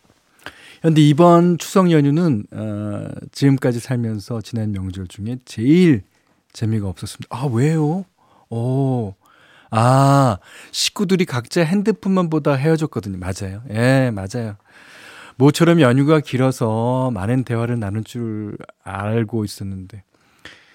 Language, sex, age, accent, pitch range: Korean, male, 40-59, native, 105-145 Hz